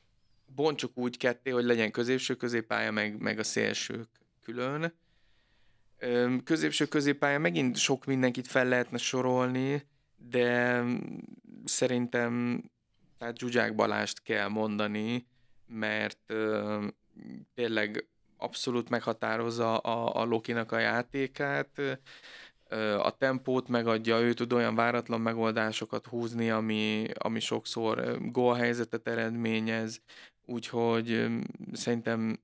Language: Hungarian